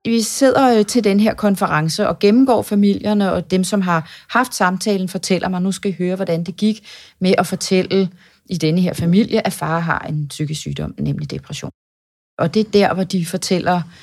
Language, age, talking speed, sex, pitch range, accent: Danish, 30-49, 195 wpm, female, 165-215 Hz, native